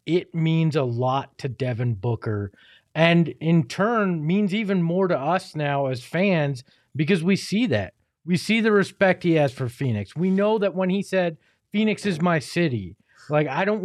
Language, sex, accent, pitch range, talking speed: English, male, American, 145-190 Hz, 185 wpm